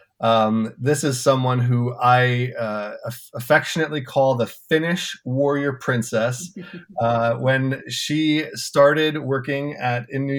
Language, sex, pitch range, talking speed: English, male, 115-140 Hz, 125 wpm